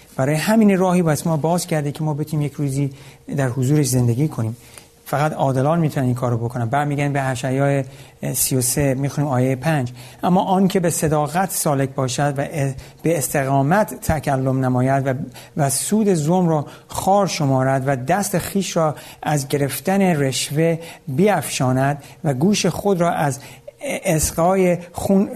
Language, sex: Persian, male